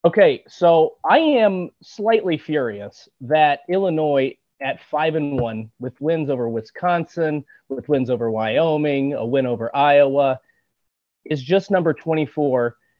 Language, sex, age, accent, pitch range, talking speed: English, male, 30-49, American, 130-175 Hz, 130 wpm